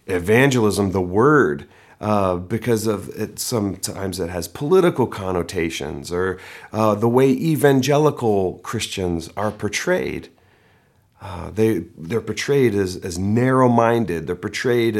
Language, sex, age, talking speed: English, male, 40-59, 120 wpm